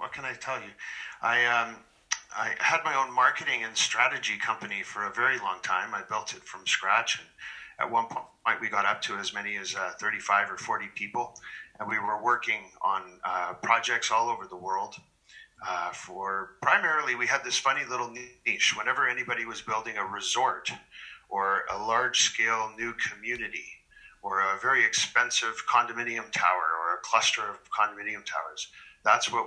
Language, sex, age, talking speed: English, male, 50-69, 175 wpm